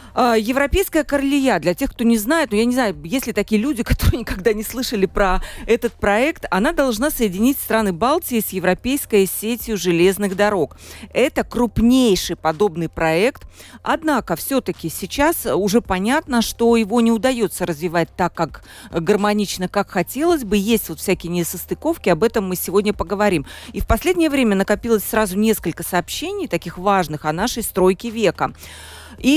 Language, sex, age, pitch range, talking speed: Russian, female, 40-59, 180-240 Hz, 155 wpm